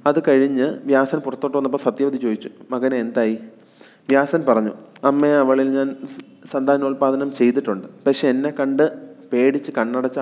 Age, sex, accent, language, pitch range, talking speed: 30-49, male, native, Malayalam, 125-145 Hz, 125 wpm